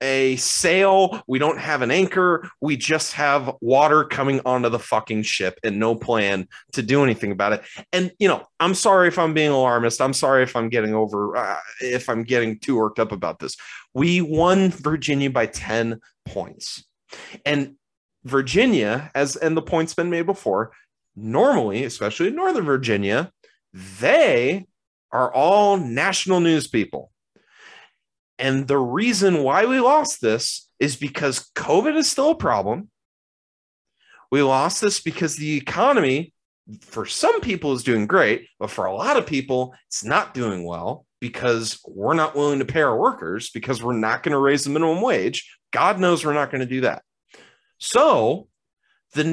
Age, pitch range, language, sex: 30-49, 120-175 Hz, English, male